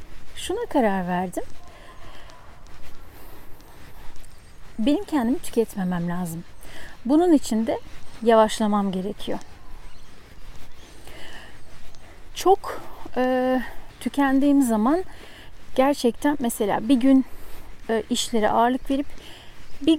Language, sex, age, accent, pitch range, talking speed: Turkish, female, 40-59, native, 215-280 Hz, 75 wpm